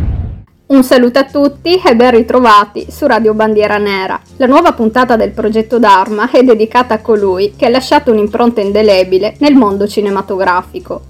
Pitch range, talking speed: 205-250 Hz, 155 wpm